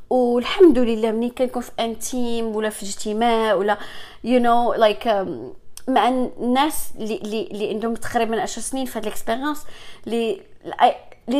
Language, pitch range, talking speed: English, 230-280 Hz, 135 wpm